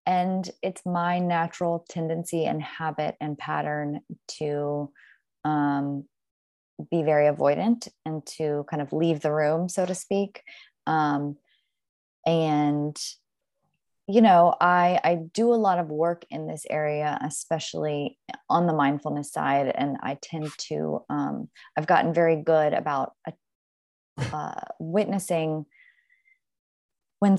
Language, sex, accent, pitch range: English, female, American, 145-175 Hz